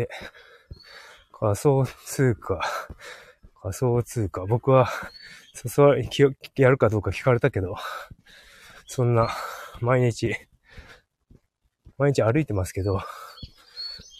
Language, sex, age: Japanese, male, 20-39